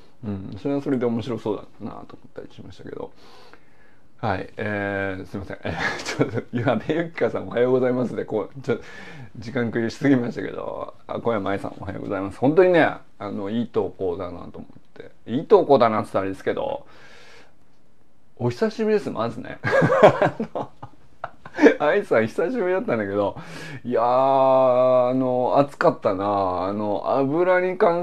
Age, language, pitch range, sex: 30-49, Japanese, 105-145 Hz, male